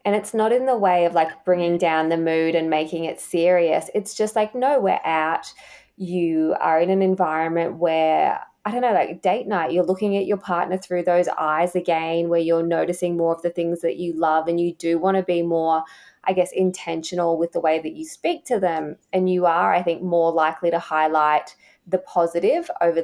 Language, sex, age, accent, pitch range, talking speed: English, female, 20-39, Australian, 160-185 Hz, 215 wpm